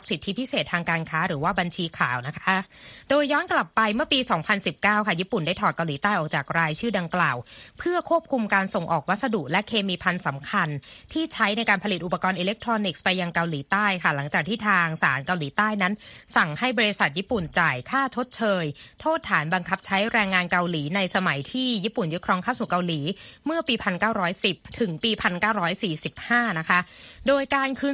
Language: Thai